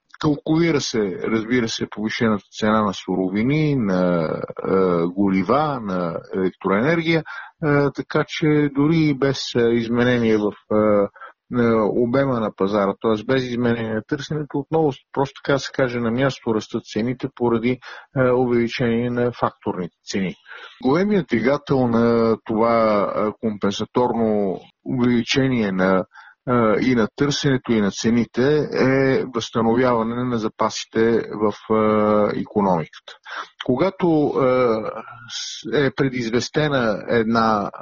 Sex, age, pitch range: male, 50-69, 110-140 Hz